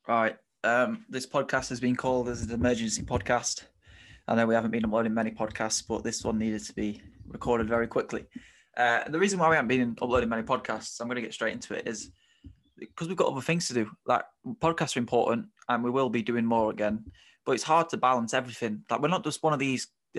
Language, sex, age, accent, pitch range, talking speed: English, male, 20-39, British, 115-135 Hz, 230 wpm